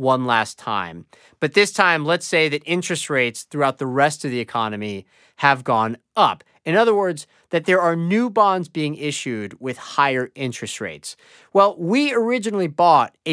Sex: male